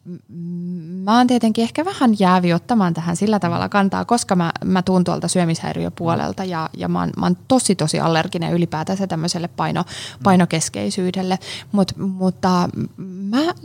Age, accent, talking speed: 20-39, native, 130 wpm